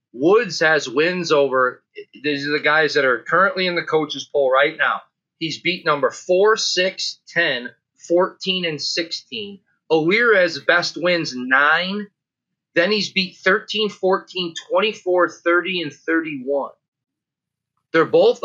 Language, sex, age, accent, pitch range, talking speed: English, male, 30-49, American, 150-195 Hz, 135 wpm